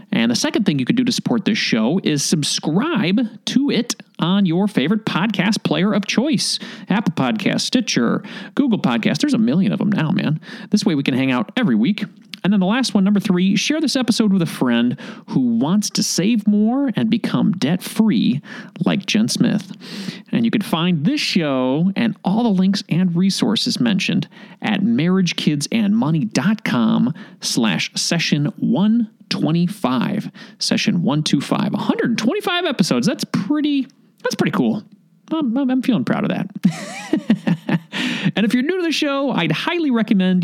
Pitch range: 200-230 Hz